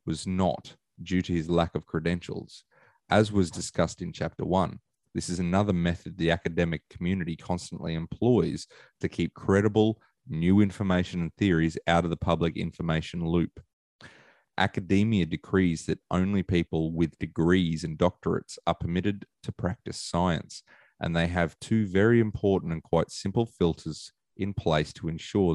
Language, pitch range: English, 85-105 Hz